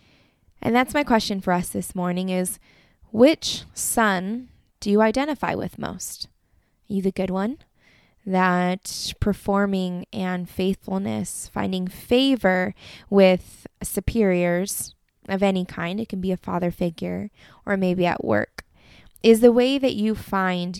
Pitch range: 180-220 Hz